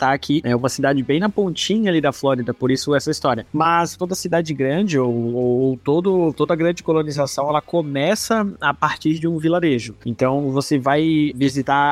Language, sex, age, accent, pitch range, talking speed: Portuguese, male, 20-39, Brazilian, 140-175 Hz, 180 wpm